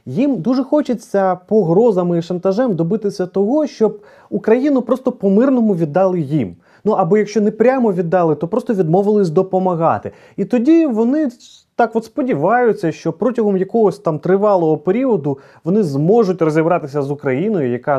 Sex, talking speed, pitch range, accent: male, 140 wpm, 145-210 Hz, native